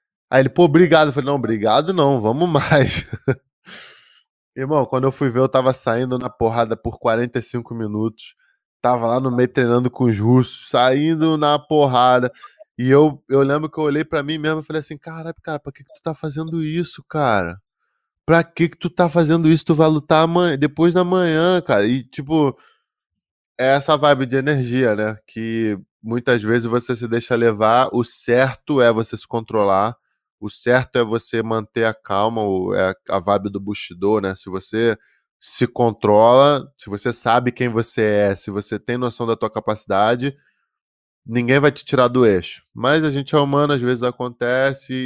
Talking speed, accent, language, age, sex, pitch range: 185 wpm, Brazilian, Portuguese, 20-39, male, 115-145 Hz